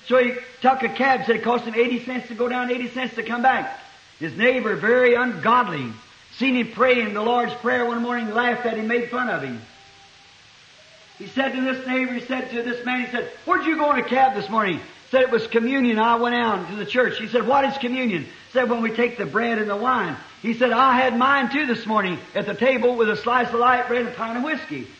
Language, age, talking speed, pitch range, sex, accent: English, 50-69, 255 wpm, 225-275 Hz, male, American